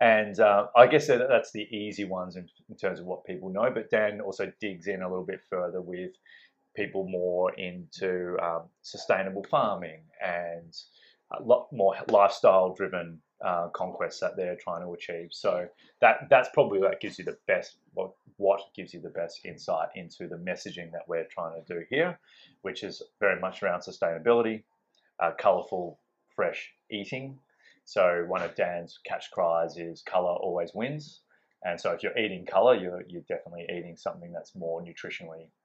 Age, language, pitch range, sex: 30-49, English, 90-125 Hz, male